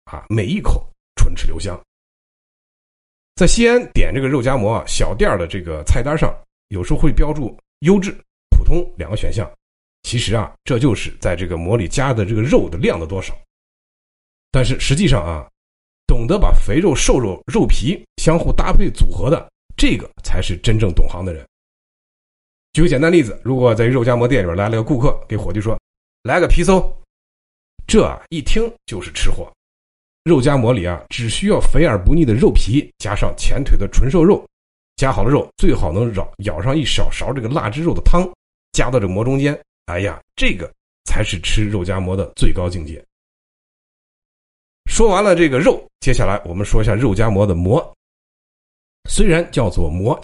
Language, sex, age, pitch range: Chinese, male, 50-69, 85-130 Hz